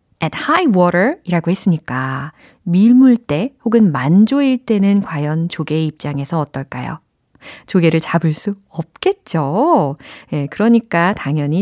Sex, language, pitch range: female, Korean, 155-230 Hz